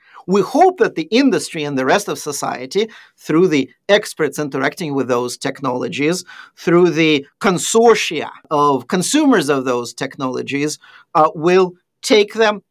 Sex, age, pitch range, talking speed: male, 50-69, 150-220 Hz, 135 wpm